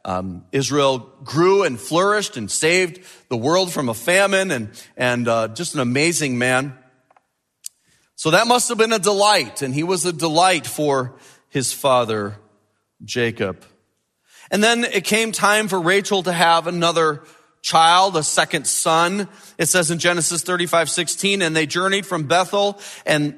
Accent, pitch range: American, 145-195 Hz